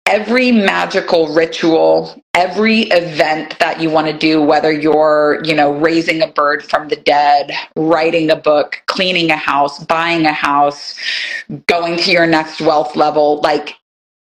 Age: 30-49